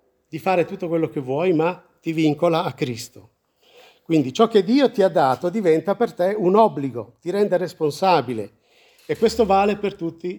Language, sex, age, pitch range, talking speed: Italian, male, 50-69, 125-190 Hz, 175 wpm